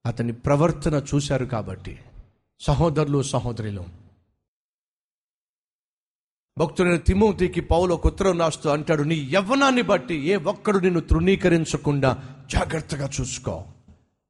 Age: 50-69